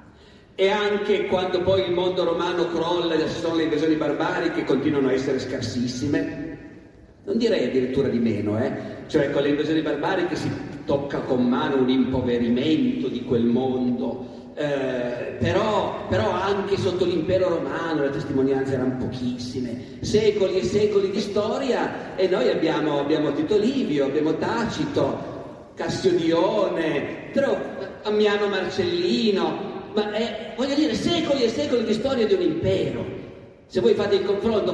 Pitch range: 130-205 Hz